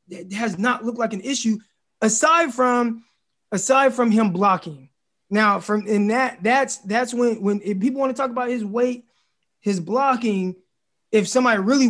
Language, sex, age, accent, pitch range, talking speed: English, male, 20-39, American, 200-250 Hz, 160 wpm